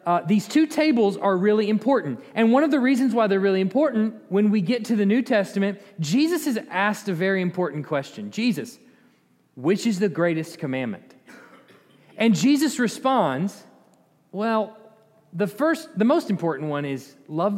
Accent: American